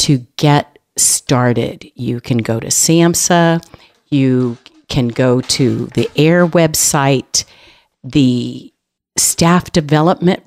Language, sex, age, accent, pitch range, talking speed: English, female, 50-69, American, 125-160 Hz, 105 wpm